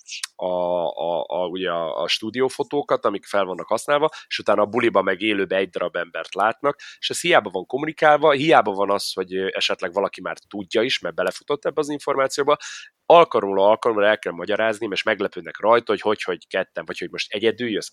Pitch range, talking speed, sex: 95-140 Hz, 190 wpm, male